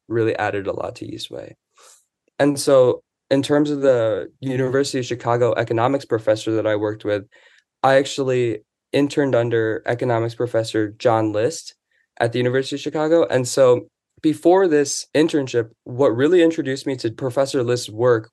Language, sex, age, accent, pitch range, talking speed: English, male, 20-39, American, 110-135 Hz, 155 wpm